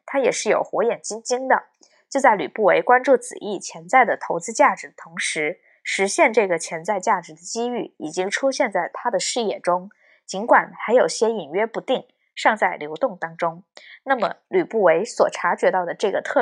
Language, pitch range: Chinese, 180-275 Hz